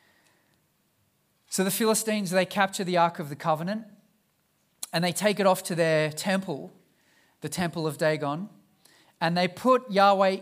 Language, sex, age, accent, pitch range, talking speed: English, male, 40-59, Australian, 150-190 Hz, 150 wpm